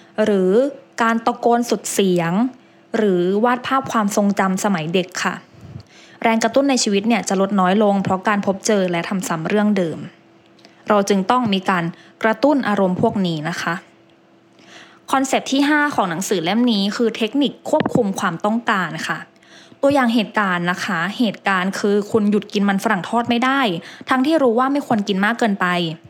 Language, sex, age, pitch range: English, female, 20-39, 190-240 Hz